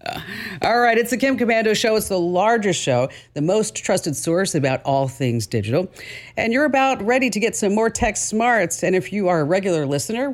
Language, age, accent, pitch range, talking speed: English, 50-69, American, 130-200 Hz, 210 wpm